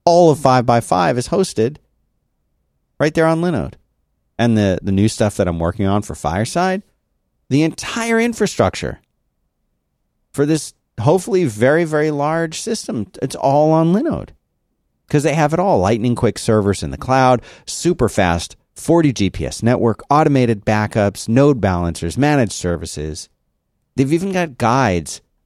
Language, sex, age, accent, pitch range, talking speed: English, male, 40-59, American, 95-145 Hz, 145 wpm